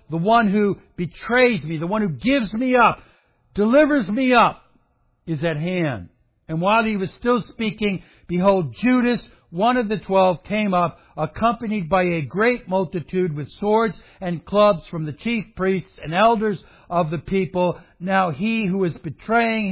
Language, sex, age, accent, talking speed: English, male, 60-79, American, 165 wpm